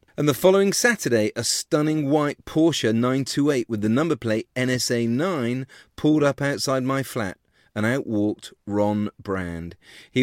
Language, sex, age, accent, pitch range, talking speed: English, male, 40-59, British, 105-140 Hz, 145 wpm